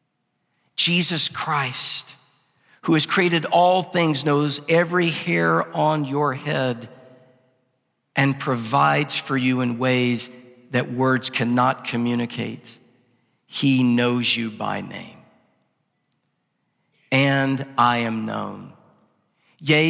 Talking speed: 100 wpm